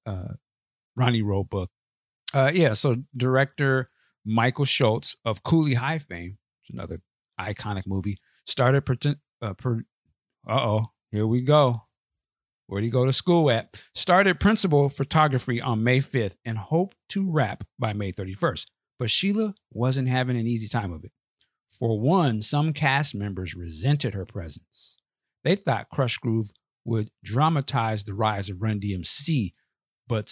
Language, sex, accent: English, male, American